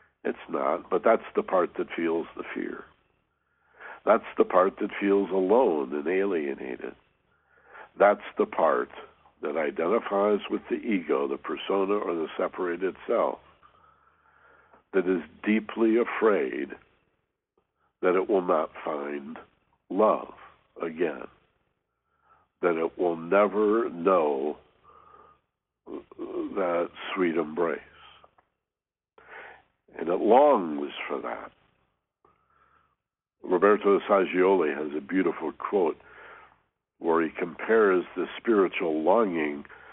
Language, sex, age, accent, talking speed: English, male, 60-79, American, 100 wpm